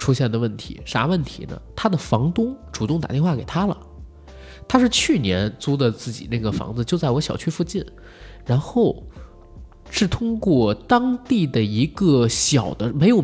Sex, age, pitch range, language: male, 20-39, 115-185 Hz, Chinese